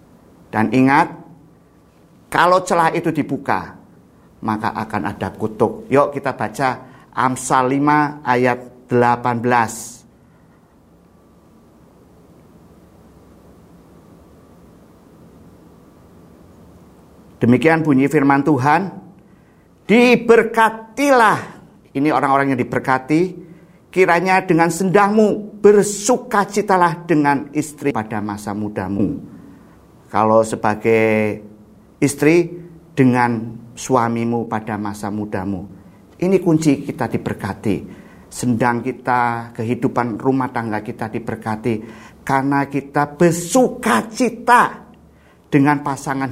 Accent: native